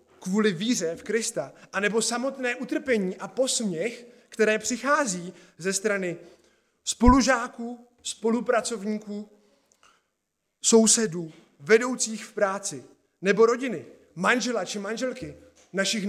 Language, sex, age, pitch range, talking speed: Czech, male, 20-39, 170-225 Hz, 95 wpm